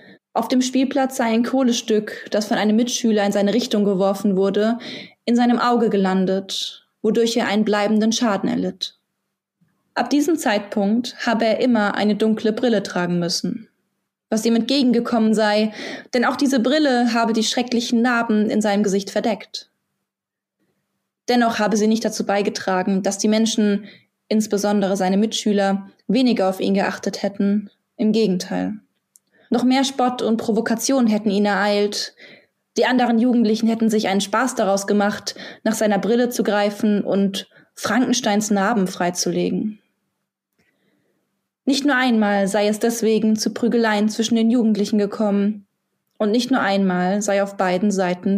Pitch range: 205-235 Hz